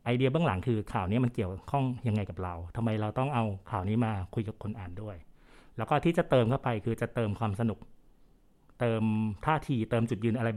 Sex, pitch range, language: male, 110-135 Hz, Thai